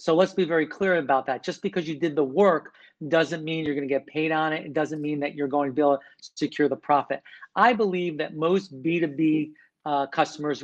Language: English